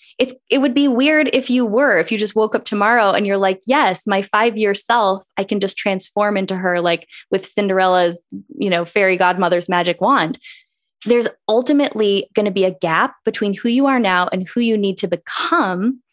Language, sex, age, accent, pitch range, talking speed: English, female, 10-29, American, 190-240 Hz, 195 wpm